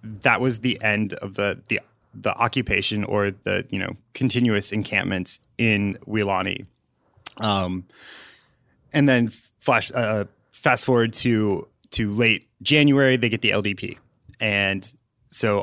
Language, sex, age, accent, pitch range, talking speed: English, male, 30-49, American, 100-125 Hz, 130 wpm